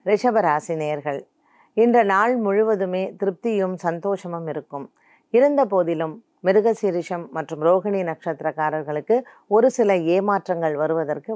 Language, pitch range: Tamil, 160-210 Hz